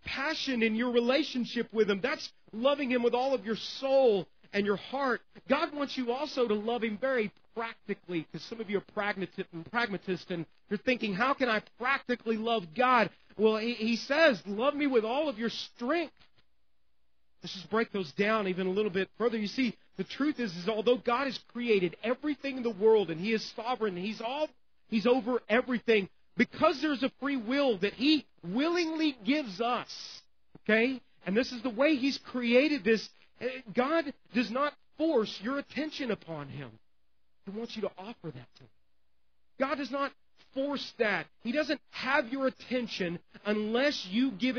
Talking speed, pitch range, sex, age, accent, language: 180 wpm, 200-260 Hz, male, 40-59, American, English